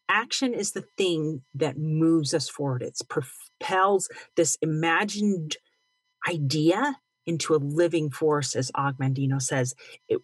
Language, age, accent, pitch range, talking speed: English, 40-59, American, 150-210 Hz, 125 wpm